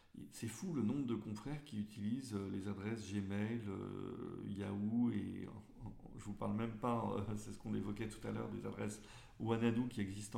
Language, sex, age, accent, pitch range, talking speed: French, male, 40-59, French, 105-125 Hz, 180 wpm